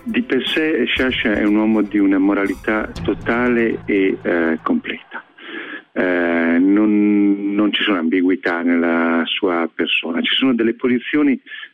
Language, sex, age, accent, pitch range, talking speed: Italian, male, 50-69, native, 95-125 Hz, 140 wpm